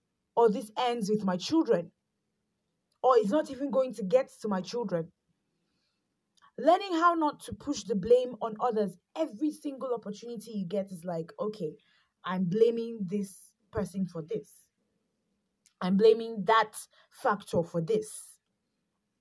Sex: female